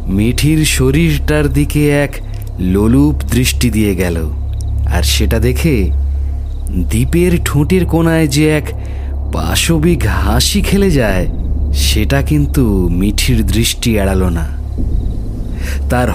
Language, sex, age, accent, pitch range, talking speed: Bengali, male, 30-49, native, 75-120 Hz, 45 wpm